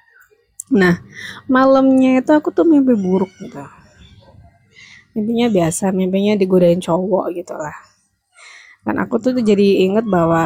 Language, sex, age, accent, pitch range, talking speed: Indonesian, female, 20-39, native, 180-215 Hz, 120 wpm